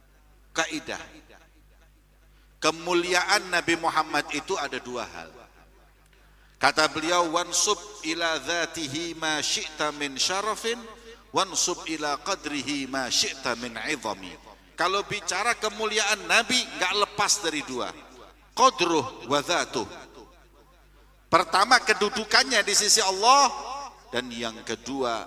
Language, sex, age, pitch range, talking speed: Indonesian, male, 50-69, 140-205 Hz, 85 wpm